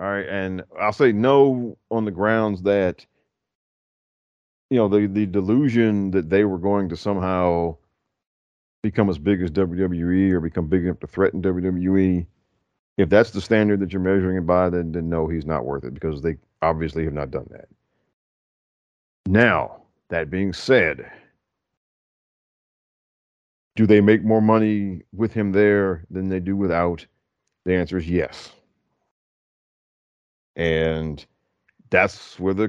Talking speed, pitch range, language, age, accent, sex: 145 wpm, 85-105 Hz, English, 40-59, American, male